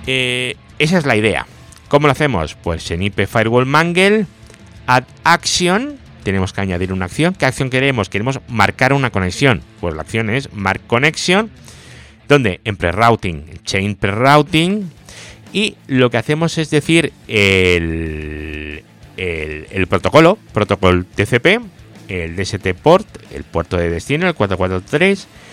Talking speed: 140 wpm